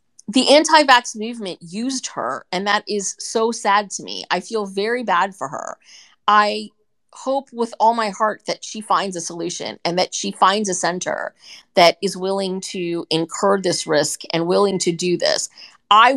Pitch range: 175-215 Hz